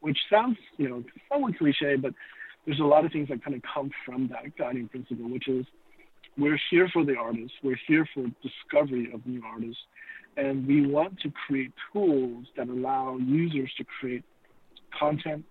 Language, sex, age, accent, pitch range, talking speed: English, male, 50-69, American, 125-145 Hz, 180 wpm